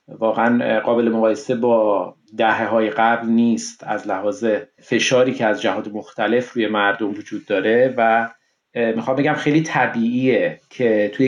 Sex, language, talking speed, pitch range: male, Persian, 135 wpm, 115-135 Hz